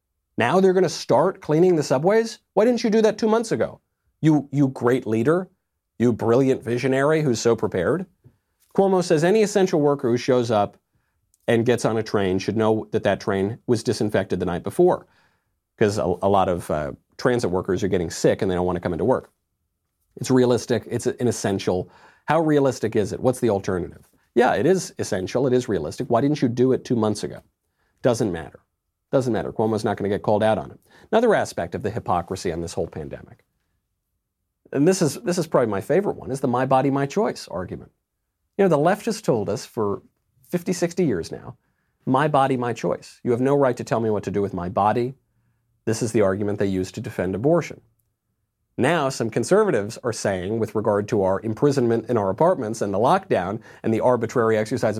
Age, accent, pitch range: 40-59, American, 105-145 Hz